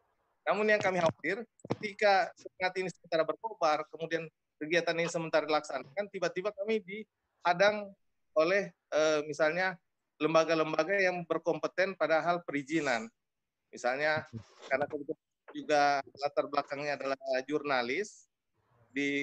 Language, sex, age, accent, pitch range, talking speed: Indonesian, male, 30-49, native, 145-175 Hz, 105 wpm